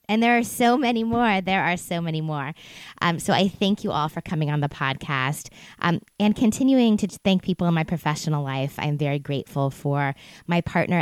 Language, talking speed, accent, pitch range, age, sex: English, 210 wpm, American, 145-190 Hz, 20-39, female